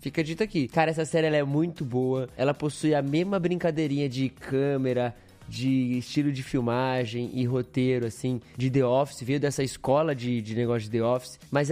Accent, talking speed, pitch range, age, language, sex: Brazilian, 190 wpm, 135-175 Hz, 20-39, Portuguese, male